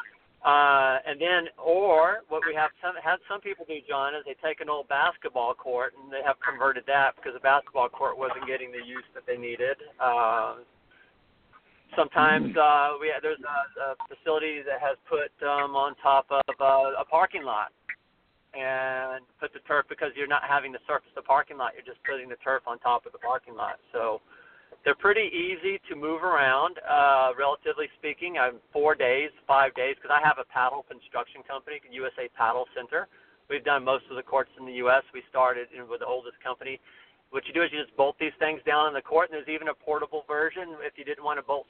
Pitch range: 135-165 Hz